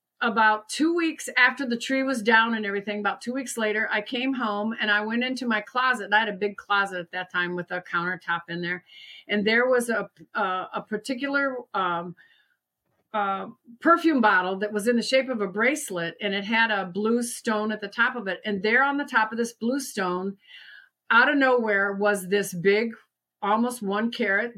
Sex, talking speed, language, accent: female, 205 wpm, English, American